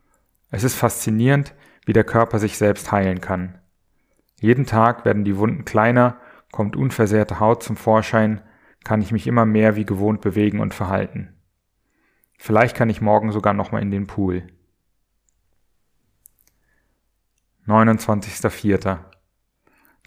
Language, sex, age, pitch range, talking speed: German, male, 30-49, 95-115 Hz, 125 wpm